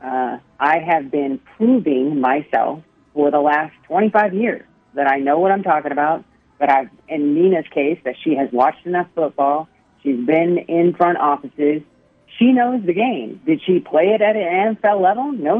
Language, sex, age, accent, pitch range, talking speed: English, female, 40-59, American, 150-225 Hz, 180 wpm